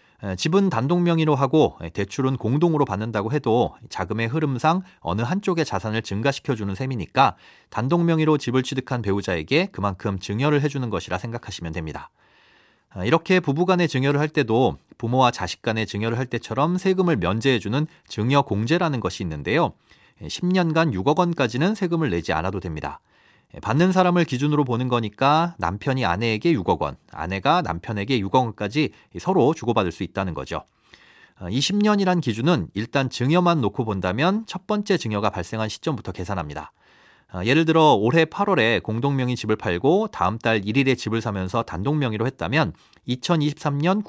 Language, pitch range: Korean, 105-155 Hz